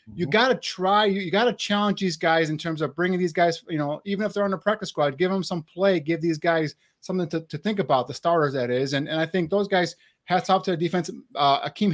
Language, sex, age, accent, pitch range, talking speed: English, male, 30-49, American, 150-180 Hz, 275 wpm